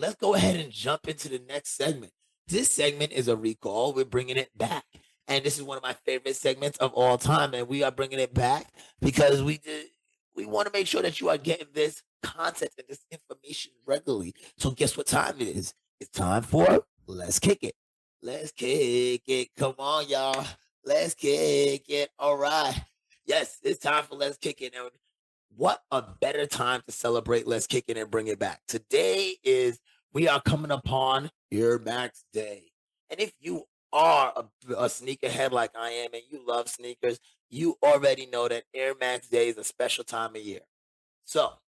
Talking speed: 190 wpm